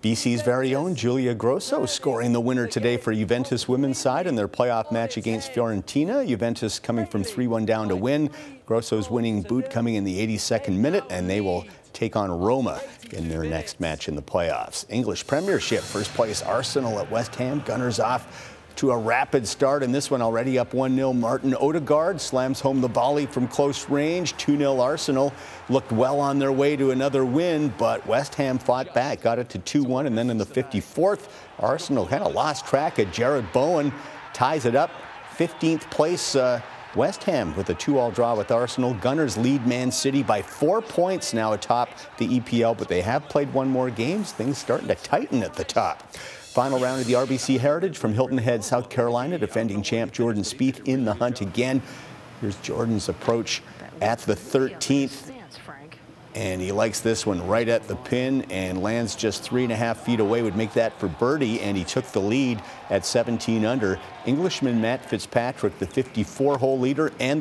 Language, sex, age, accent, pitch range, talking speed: English, male, 50-69, American, 115-135 Hz, 190 wpm